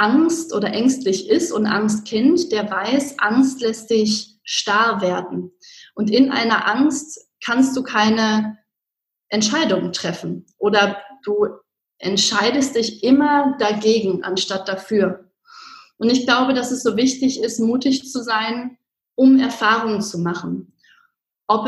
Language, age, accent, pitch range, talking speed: German, 30-49, German, 215-270 Hz, 130 wpm